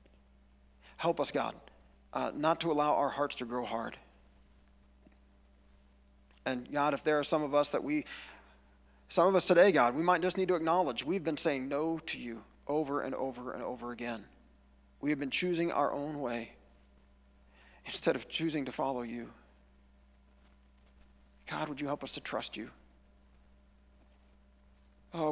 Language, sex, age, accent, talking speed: English, male, 40-59, American, 160 wpm